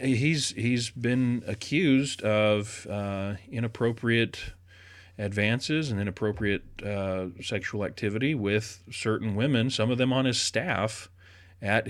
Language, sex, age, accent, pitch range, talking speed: English, male, 40-59, American, 100-130 Hz, 115 wpm